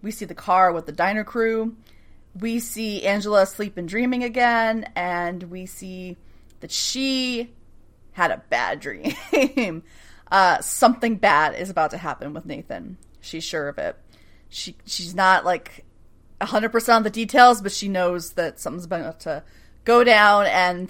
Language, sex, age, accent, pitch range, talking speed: English, female, 30-49, American, 170-215 Hz, 160 wpm